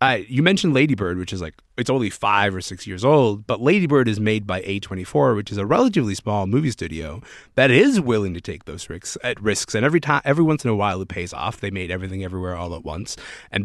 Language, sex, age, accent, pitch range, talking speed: English, male, 30-49, American, 95-130 Hz, 255 wpm